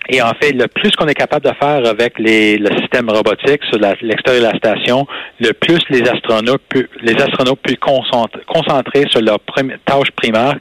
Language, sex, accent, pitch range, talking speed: French, male, Canadian, 110-140 Hz, 205 wpm